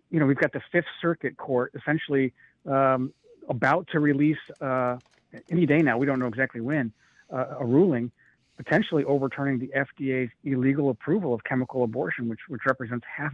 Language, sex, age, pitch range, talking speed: English, male, 50-69, 125-145 Hz, 170 wpm